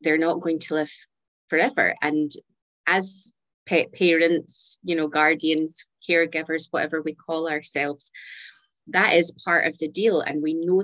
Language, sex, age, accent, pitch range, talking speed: English, female, 30-49, British, 155-185 Hz, 150 wpm